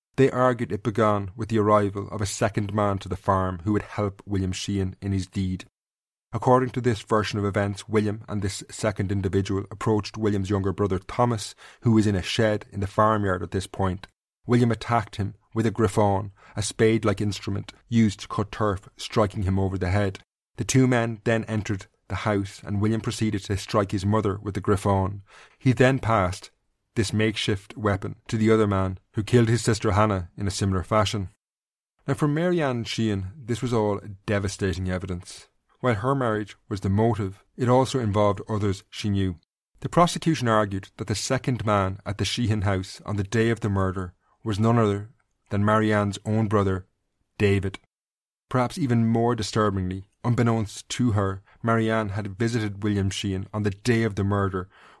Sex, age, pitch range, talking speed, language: male, 30-49, 100-115 Hz, 180 wpm, English